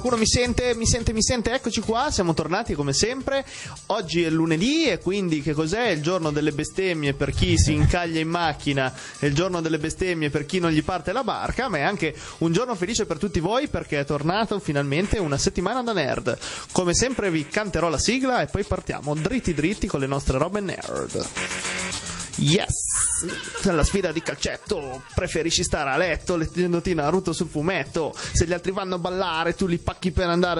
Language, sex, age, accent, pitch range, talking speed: Italian, male, 30-49, native, 150-195 Hz, 190 wpm